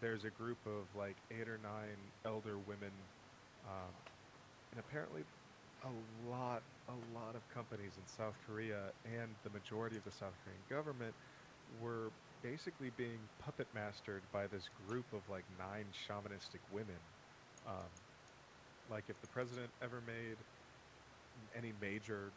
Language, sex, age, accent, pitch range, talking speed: English, male, 30-49, American, 100-115 Hz, 140 wpm